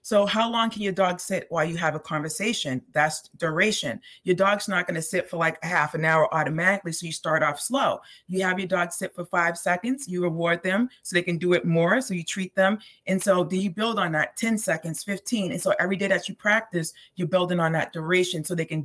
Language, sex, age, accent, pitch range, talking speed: English, female, 30-49, American, 165-195 Hz, 245 wpm